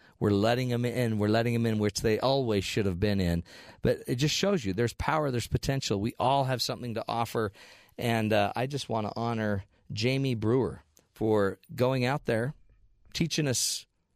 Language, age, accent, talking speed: English, 40-59, American, 190 wpm